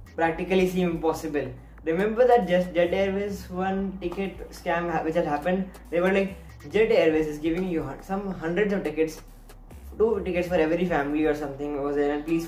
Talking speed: 180 wpm